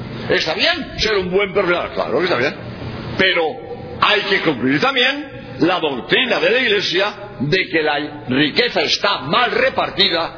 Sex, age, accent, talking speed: male, 60-79, Spanish, 155 wpm